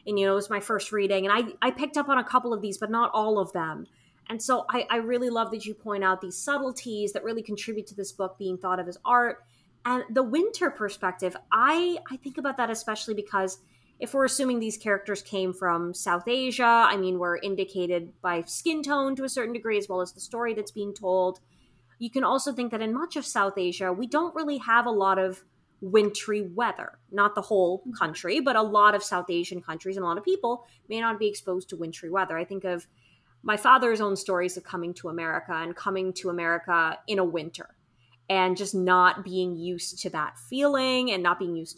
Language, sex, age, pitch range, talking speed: English, female, 20-39, 180-235 Hz, 225 wpm